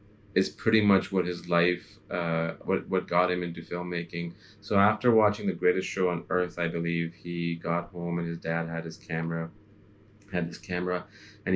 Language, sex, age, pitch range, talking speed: English, male, 20-39, 85-95 Hz, 185 wpm